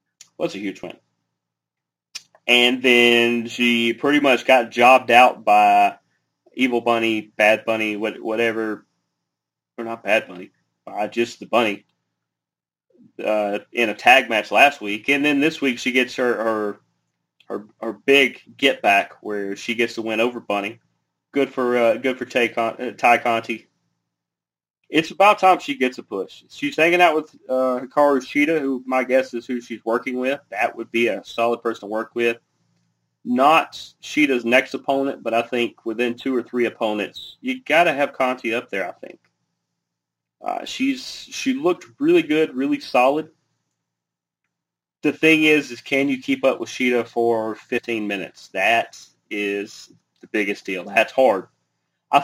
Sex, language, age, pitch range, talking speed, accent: male, English, 30-49, 110-135 Hz, 165 wpm, American